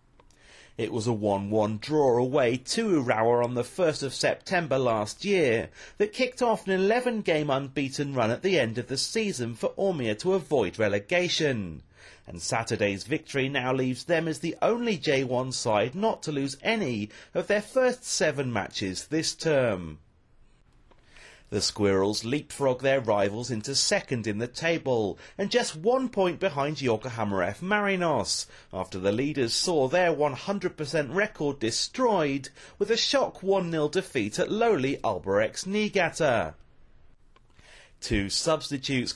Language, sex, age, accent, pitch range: Japanese, male, 40-59, British, 120-180 Hz